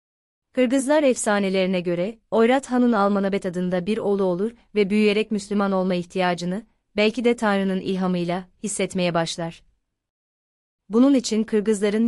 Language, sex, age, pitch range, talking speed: Turkish, female, 30-49, 180-215 Hz, 120 wpm